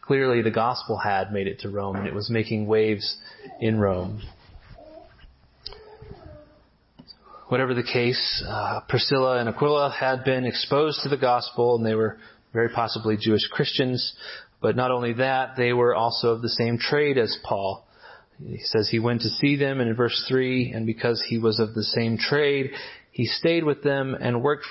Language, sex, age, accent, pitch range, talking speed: English, male, 30-49, American, 110-130 Hz, 175 wpm